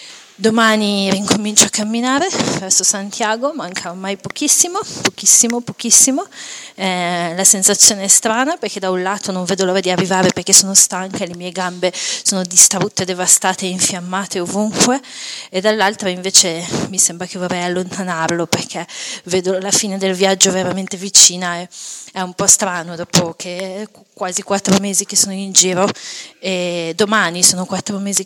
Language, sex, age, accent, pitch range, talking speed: Italian, female, 30-49, native, 185-210 Hz, 155 wpm